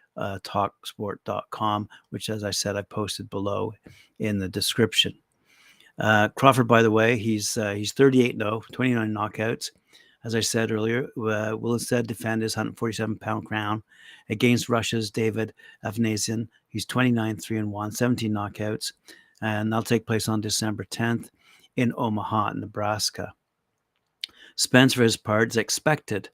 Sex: male